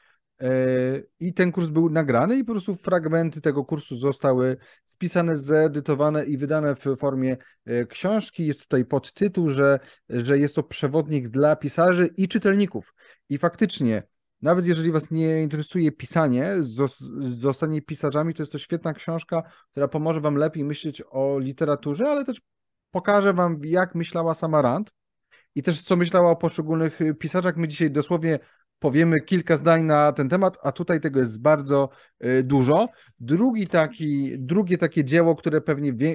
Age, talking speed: 30-49, 150 wpm